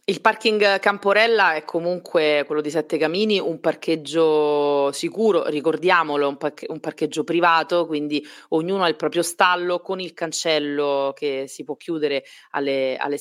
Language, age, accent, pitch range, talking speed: Italian, 30-49, native, 145-170 Hz, 145 wpm